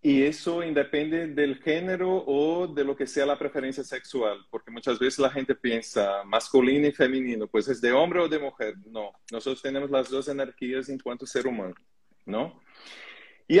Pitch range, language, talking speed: 125-150 Hz, Spanish, 185 wpm